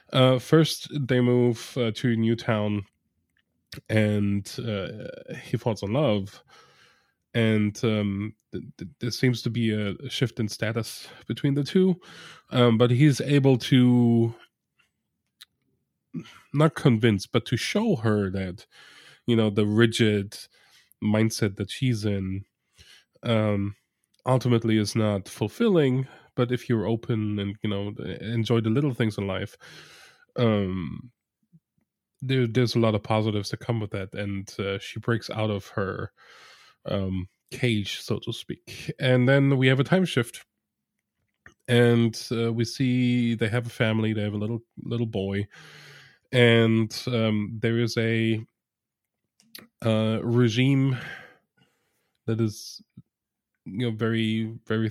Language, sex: English, male